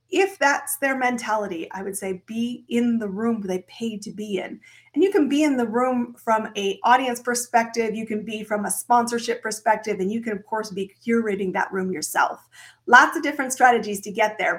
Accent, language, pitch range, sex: American, English, 205-255 Hz, female